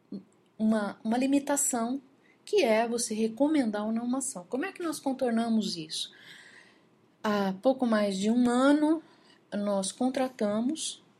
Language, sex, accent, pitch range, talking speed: Portuguese, female, Brazilian, 180-230 Hz, 135 wpm